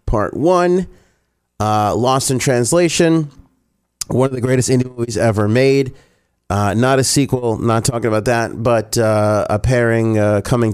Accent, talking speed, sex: American, 150 wpm, male